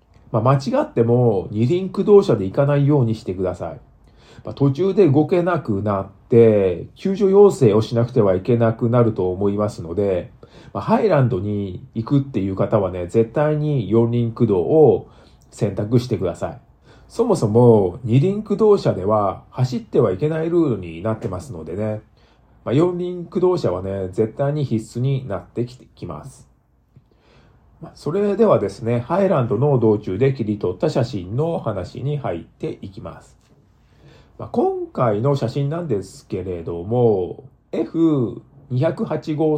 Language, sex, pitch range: Japanese, male, 105-145 Hz